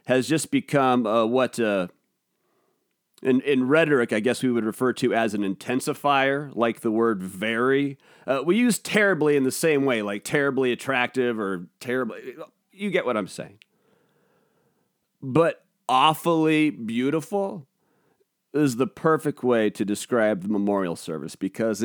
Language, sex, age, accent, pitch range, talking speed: English, male, 30-49, American, 125-200 Hz, 145 wpm